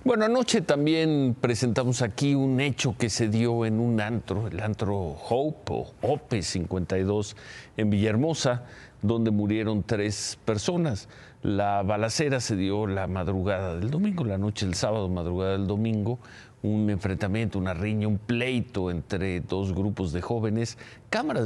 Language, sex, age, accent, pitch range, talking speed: Spanish, male, 40-59, Mexican, 95-115 Hz, 145 wpm